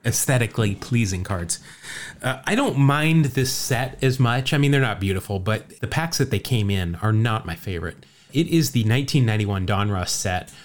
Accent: American